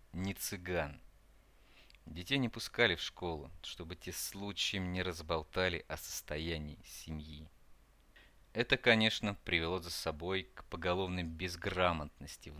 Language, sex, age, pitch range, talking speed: Russian, male, 30-49, 80-95 Hz, 115 wpm